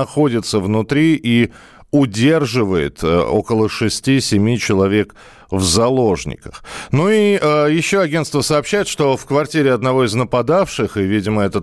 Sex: male